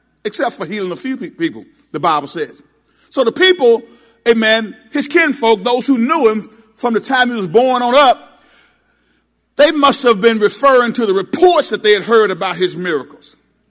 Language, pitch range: English, 215-285 Hz